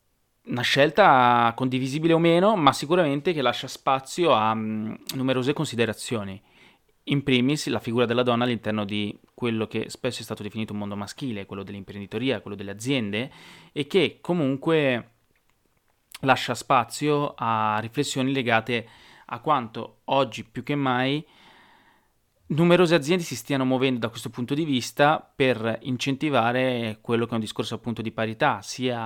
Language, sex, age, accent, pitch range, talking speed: Italian, male, 30-49, native, 110-140 Hz, 145 wpm